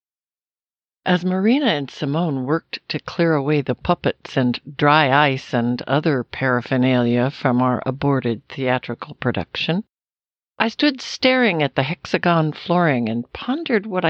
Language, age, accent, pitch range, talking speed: English, 60-79, American, 135-200 Hz, 130 wpm